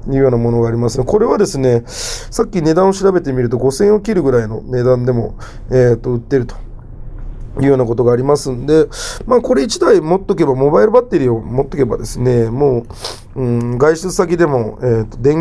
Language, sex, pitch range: Japanese, male, 120-165 Hz